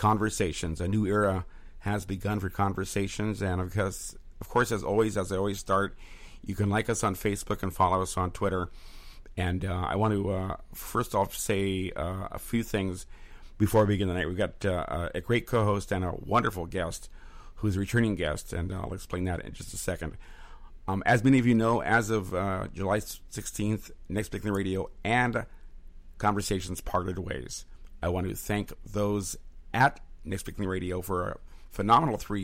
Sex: male